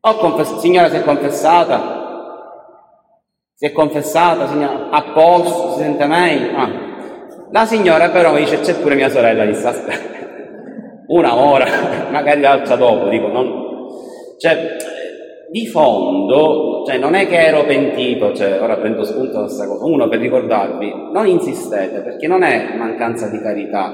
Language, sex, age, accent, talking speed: Italian, male, 30-49, native, 155 wpm